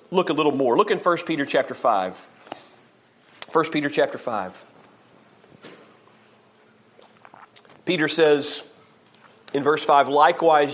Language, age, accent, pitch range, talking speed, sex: English, 40-59, American, 145-180 Hz, 110 wpm, male